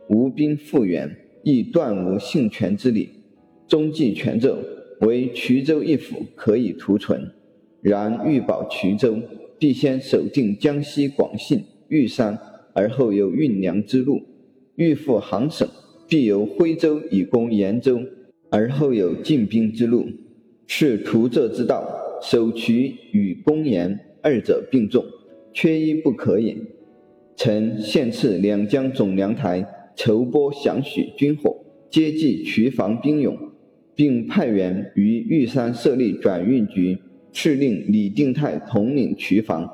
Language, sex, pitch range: Chinese, male, 110-150 Hz